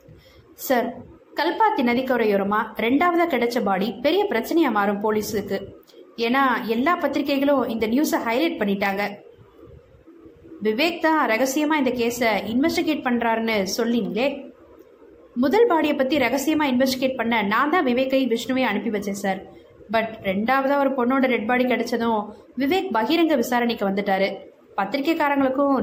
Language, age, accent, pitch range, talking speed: Tamil, 20-39, native, 215-285 Hz, 115 wpm